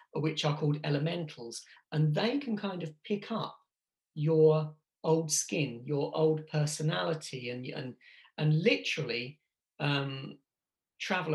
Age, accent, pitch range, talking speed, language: 40-59, British, 135-160 Hz, 120 wpm, English